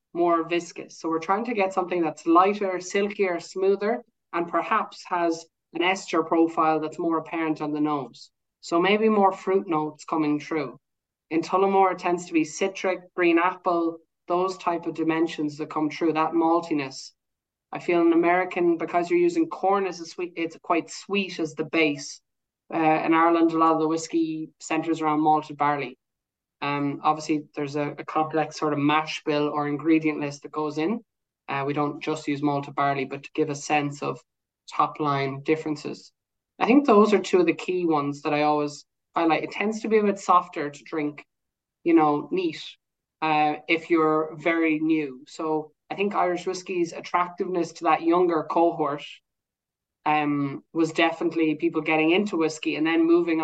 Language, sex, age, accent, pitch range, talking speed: English, male, 20-39, Irish, 150-175 Hz, 180 wpm